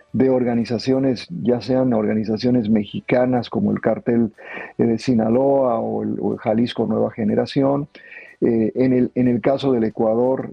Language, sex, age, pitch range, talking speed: Spanish, male, 50-69, 115-140 Hz, 150 wpm